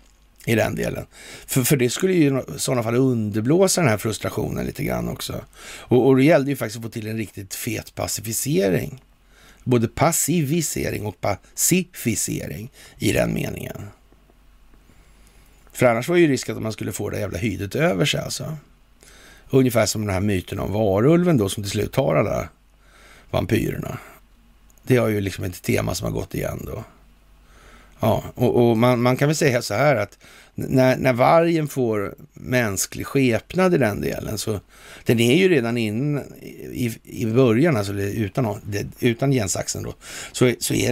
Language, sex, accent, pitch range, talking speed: Swedish, male, native, 105-135 Hz, 170 wpm